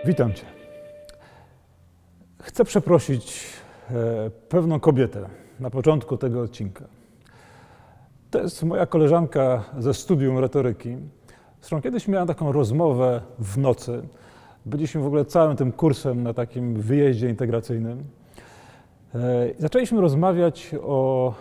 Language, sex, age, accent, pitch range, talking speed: Polish, male, 40-59, native, 125-175 Hz, 105 wpm